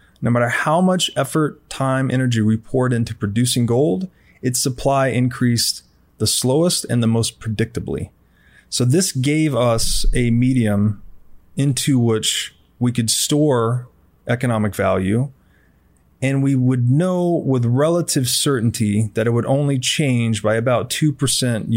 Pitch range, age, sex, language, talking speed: 105-135 Hz, 30-49, male, English, 135 wpm